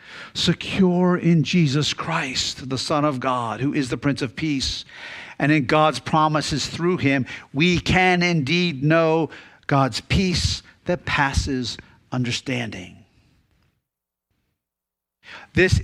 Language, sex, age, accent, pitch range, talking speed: English, male, 50-69, American, 125-160 Hz, 115 wpm